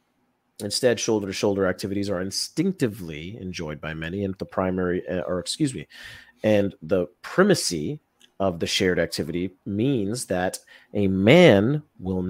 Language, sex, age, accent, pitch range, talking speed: English, male, 40-59, American, 90-115 Hz, 135 wpm